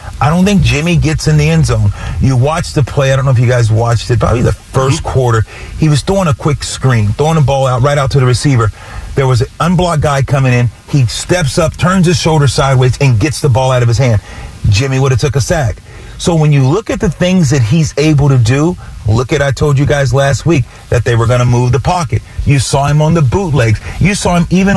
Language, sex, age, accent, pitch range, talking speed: English, male, 40-59, American, 125-155 Hz, 255 wpm